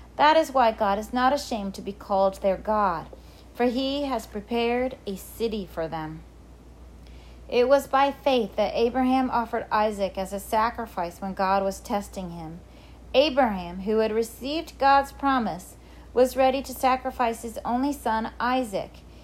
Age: 40-59